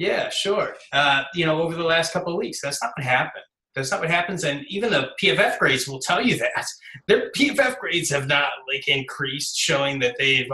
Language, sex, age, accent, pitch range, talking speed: English, male, 30-49, American, 125-150 Hz, 215 wpm